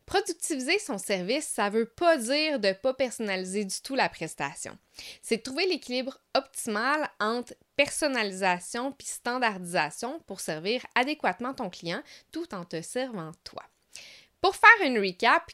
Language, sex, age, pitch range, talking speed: French, female, 20-39, 190-280 Hz, 145 wpm